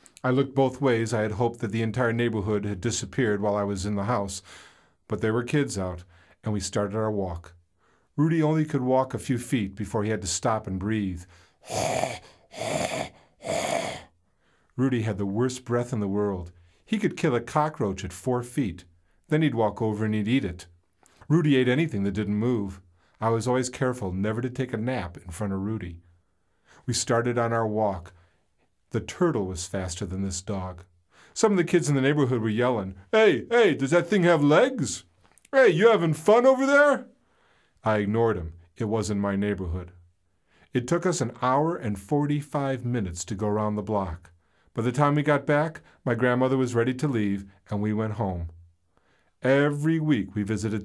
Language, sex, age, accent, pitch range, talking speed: English, male, 50-69, American, 95-130 Hz, 190 wpm